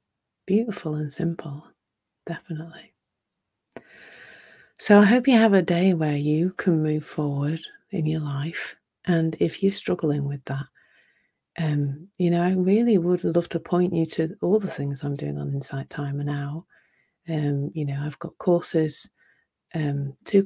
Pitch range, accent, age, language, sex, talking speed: 145-170 Hz, British, 30-49, English, female, 155 wpm